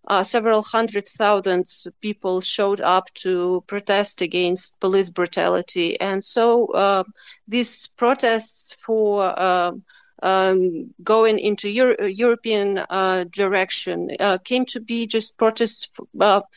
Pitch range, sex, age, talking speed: 195-240 Hz, female, 30-49, 115 wpm